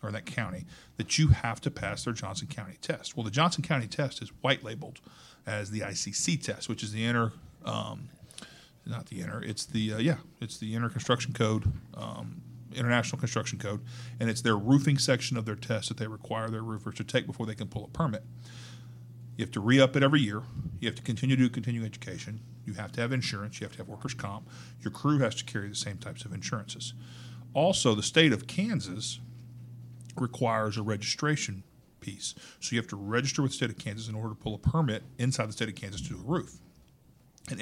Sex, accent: male, American